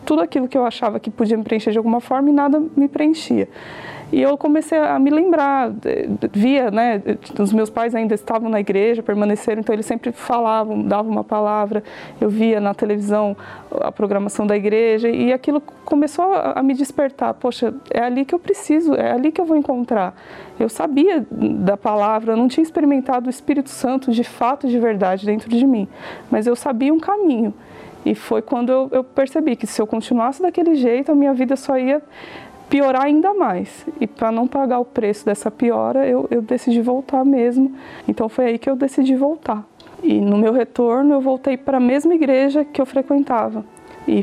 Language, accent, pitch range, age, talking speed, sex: Portuguese, Brazilian, 215-275 Hz, 20-39, 195 wpm, female